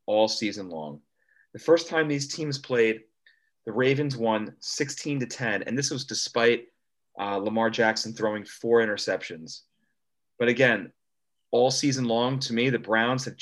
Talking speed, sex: 155 wpm, male